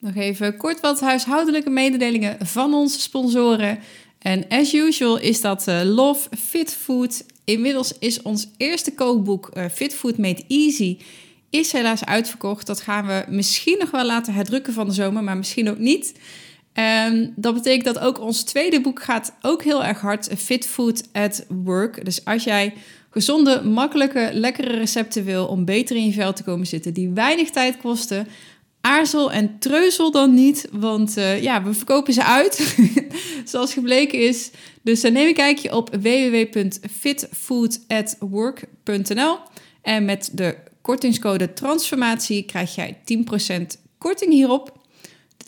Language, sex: Dutch, female